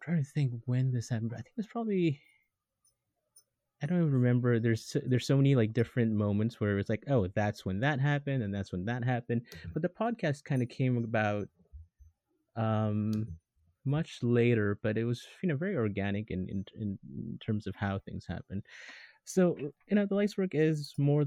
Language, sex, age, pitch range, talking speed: English, male, 30-49, 105-135 Hz, 195 wpm